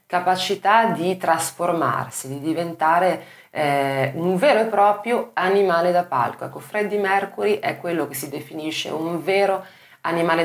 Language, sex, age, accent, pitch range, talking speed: Italian, female, 30-49, native, 135-180 Hz, 140 wpm